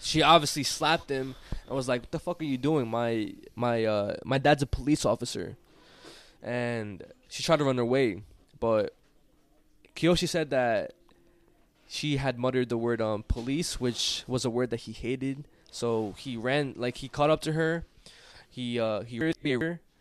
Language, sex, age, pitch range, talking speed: English, male, 20-39, 115-145 Hz, 175 wpm